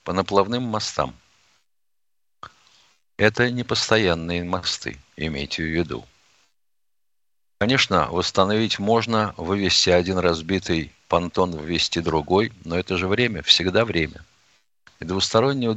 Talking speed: 100 wpm